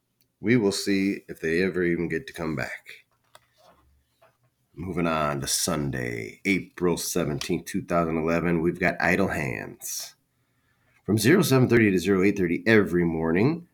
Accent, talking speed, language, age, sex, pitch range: American, 120 wpm, English, 30-49, male, 80-120 Hz